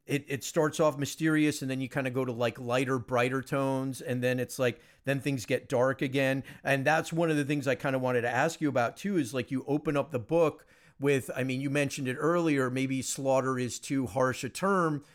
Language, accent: English, American